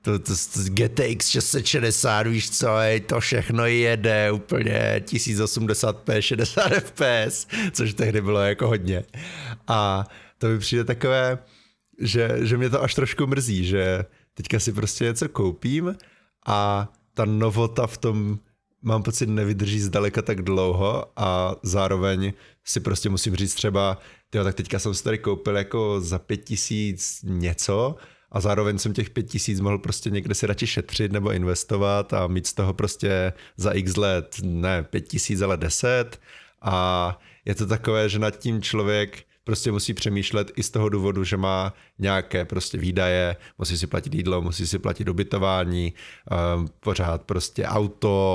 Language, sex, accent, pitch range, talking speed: Czech, male, native, 95-110 Hz, 150 wpm